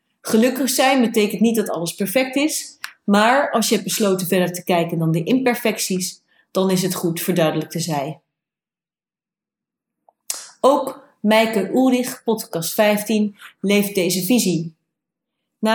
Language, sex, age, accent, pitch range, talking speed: Dutch, female, 30-49, Dutch, 180-230 Hz, 135 wpm